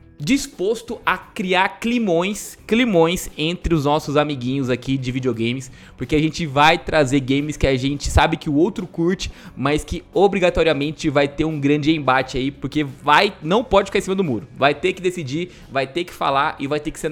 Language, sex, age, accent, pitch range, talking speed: Portuguese, male, 20-39, Brazilian, 145-200 Hz, 200 wpm